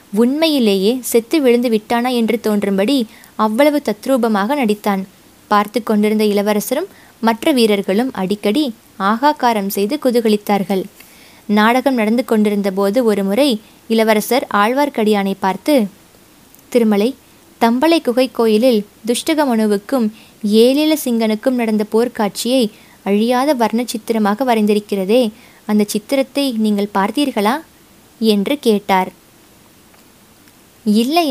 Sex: female